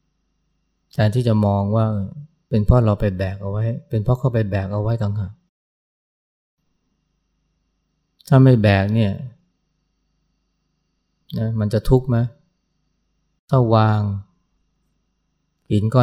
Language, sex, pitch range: Thai, male, 100-125 Hz